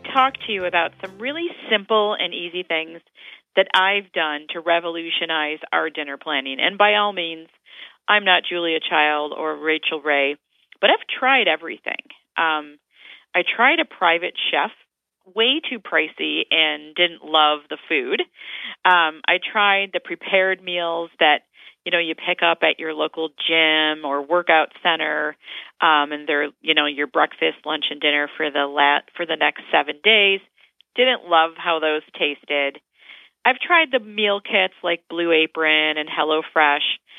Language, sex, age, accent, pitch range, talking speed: English, female, 40-59, American, 155-200 Hz, 160 wpm